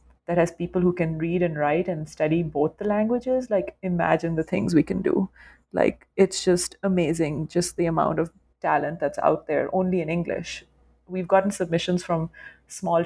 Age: 30-49